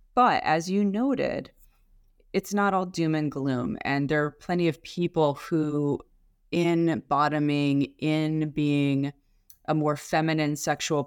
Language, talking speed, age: English, 135 wpm, 20-39